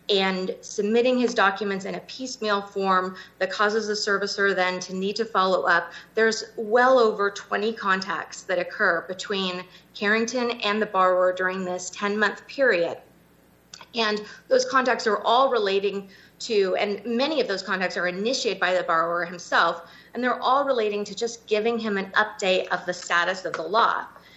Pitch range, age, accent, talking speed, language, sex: 190-235 Hz, 30-49, American, 165 wpm, English, female